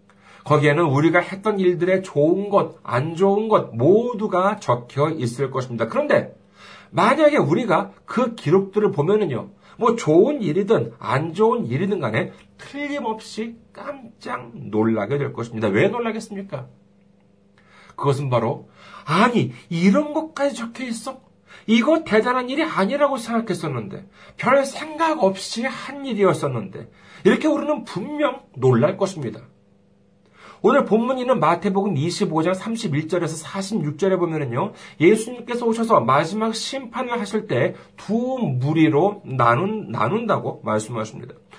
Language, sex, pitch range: Korean, male, 155-230 Hz